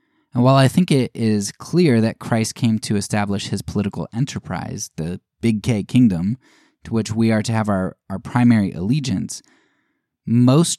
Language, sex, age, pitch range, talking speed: English, male, 10-29, 100-130 Hz, 165 wpm